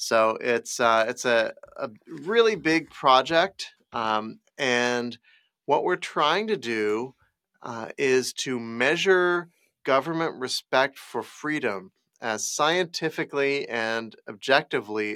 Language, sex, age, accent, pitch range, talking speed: English, male, 30-49, American, 115-140 Hz, 110 wpm